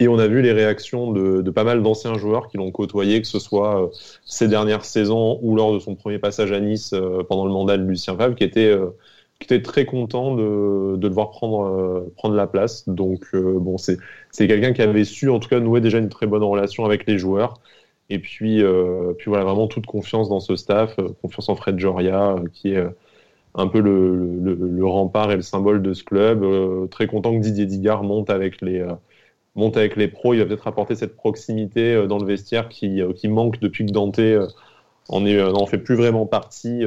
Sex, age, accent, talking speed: male, 20-39, French, 230 wpm